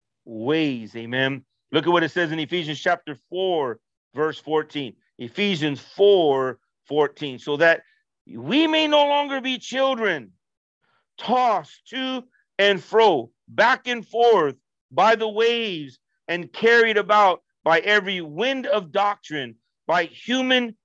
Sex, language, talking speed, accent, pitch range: male, English, 125 wpm, American, 160-230 Hz